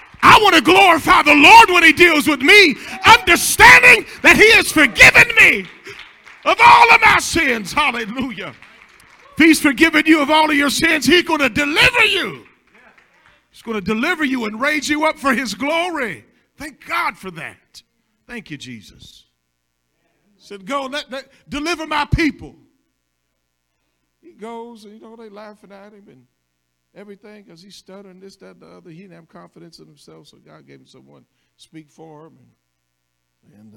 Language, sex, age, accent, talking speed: English, male, 50-69, American, 180 wpm